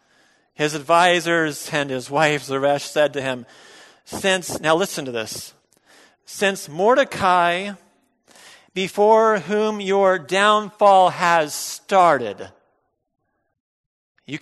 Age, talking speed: 40-59, 95 wpm